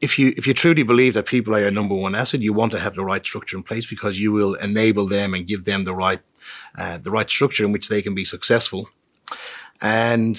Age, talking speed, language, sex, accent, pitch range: 30-49, 250 wpm, English, male, Irish, 100-125 Hz